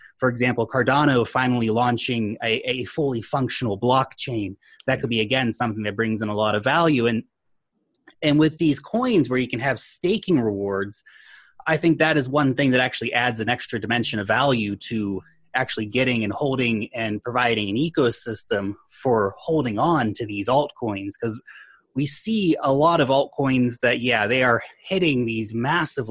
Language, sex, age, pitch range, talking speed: English, male, 30-49, 115-140 Hz, 175 wpm